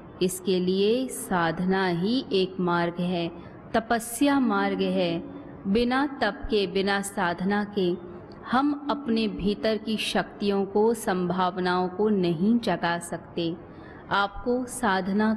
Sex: female